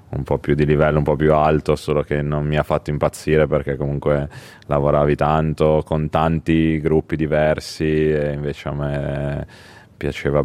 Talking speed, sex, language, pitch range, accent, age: 165 wpm, male, Italian, 70-75 Hz, native, 20-39